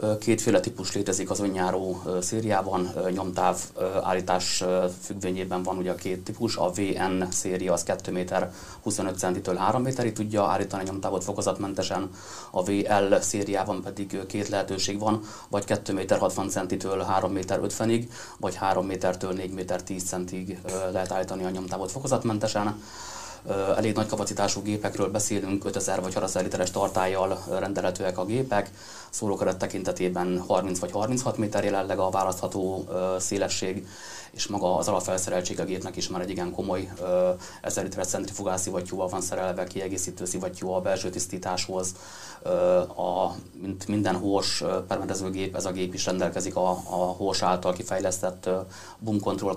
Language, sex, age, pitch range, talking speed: Hungarian, male, 30-49, 90-100 Hz, 145 wpm